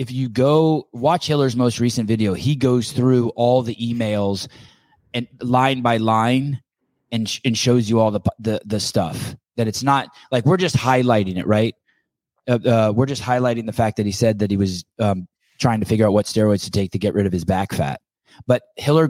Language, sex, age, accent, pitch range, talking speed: English, male, 20-39, American, 105-130 Hz, 215 wpm